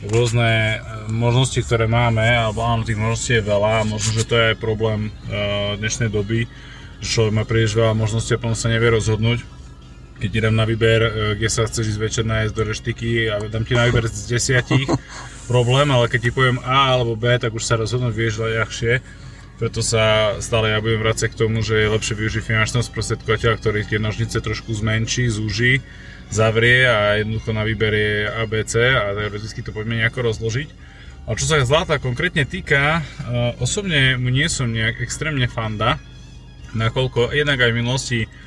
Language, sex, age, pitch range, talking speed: Slovak, male, 20-39, 110-120 Hz, 175 wpm